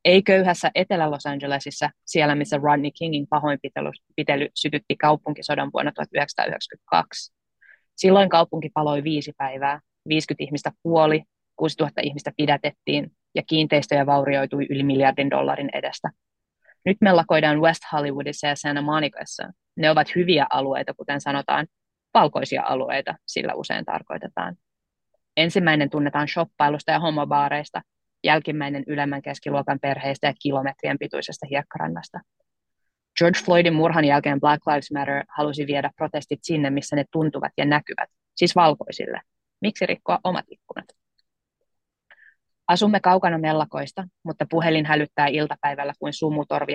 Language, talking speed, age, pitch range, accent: Finnish, 120 wpm, 20-39, 145-160 Hz, native